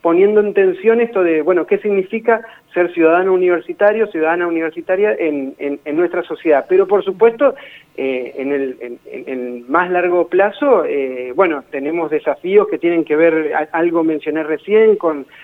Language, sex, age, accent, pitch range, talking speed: Spanish, male, 40-59, Argentinian, 140-195 Hz, 160 wpm